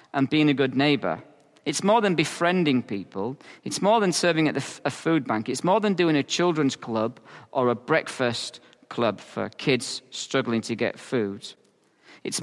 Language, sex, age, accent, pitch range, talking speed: English, male, 40-59, British, 120-160 Hz, 175 wpm